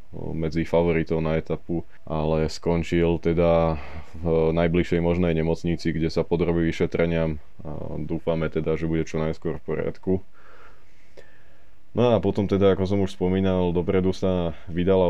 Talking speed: 140 wpm